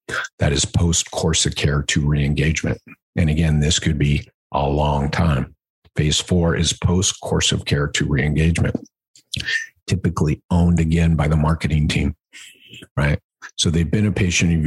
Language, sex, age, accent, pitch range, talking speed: English, male, 50-69, American, 75-85 Hz, 150 wpm